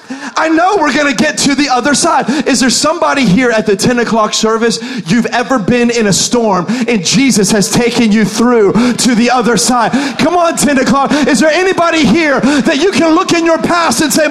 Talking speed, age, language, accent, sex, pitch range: 220 wpm, 40-59, English, American, male, 235-300 Hz